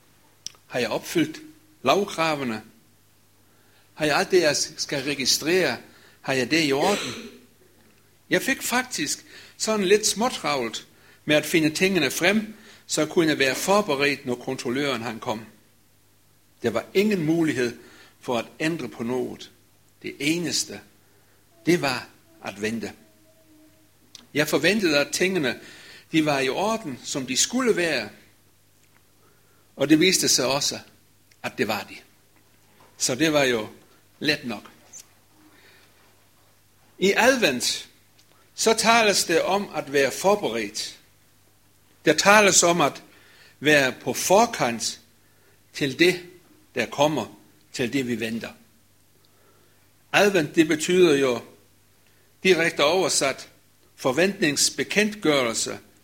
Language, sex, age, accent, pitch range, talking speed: Danish, male, 60-79, German, 110-175 Hz, 115 wpm